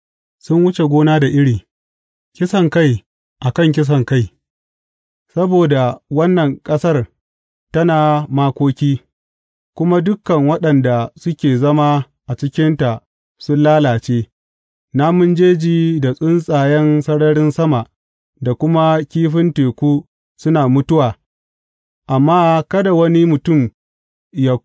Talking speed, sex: 115 wpm, male